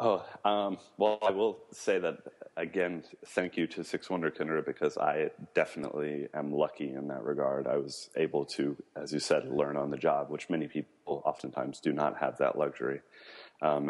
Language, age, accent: English, 30-49, American